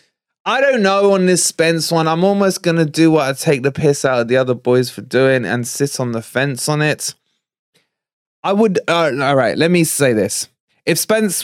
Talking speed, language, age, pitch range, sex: 220 wpm, English, 20-39, 125-160 Hz, male